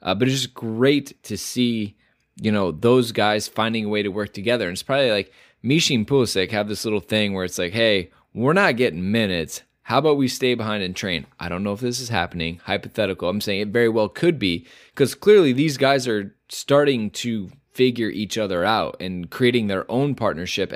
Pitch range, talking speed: 100-130 Hz, 215 wpm